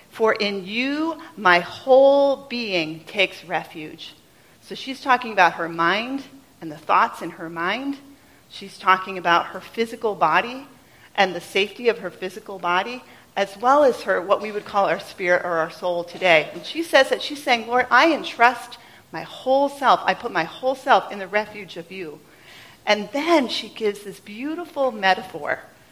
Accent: American